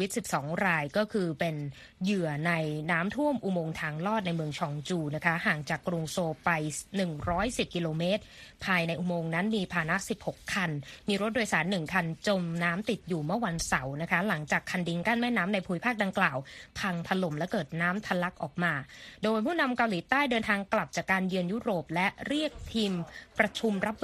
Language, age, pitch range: Thai, 20-39, 165-215 Hz